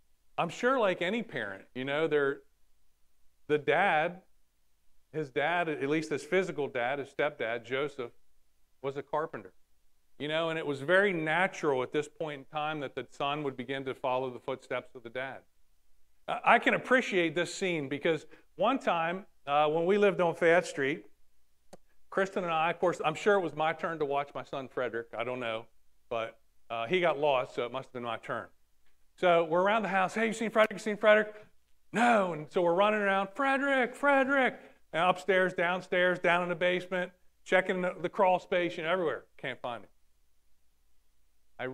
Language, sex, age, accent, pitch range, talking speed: English, male, 40-59, American, 125-190 Hz, 190 wpm